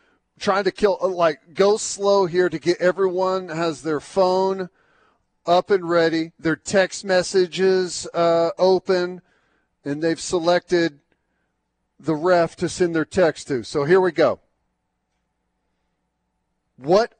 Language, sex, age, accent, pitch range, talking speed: English, male, 40-59, American, 155-185 Hz, 125 wpm